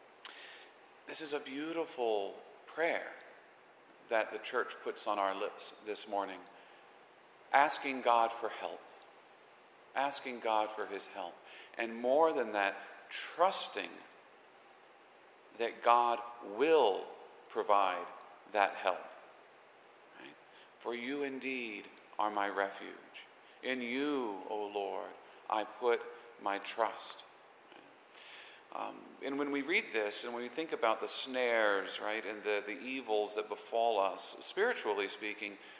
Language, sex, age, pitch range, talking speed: English, male, 50-69, 105-145 Hz, 120 wpm